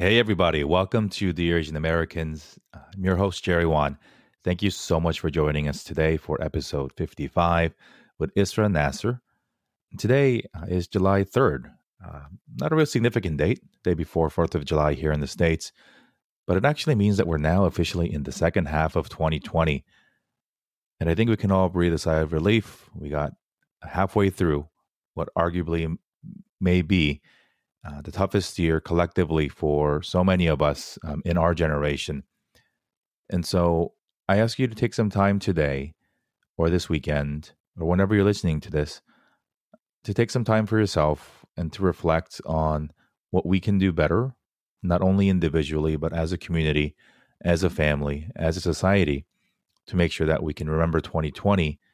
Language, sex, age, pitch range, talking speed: English, male, 30-49, 80-95 Hz, 170 wpm